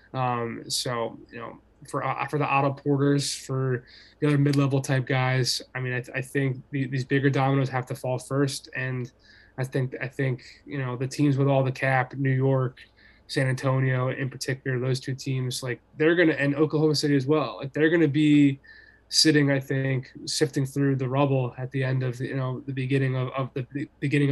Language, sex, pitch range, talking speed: English, male, 125-145 Hz, 205 wpm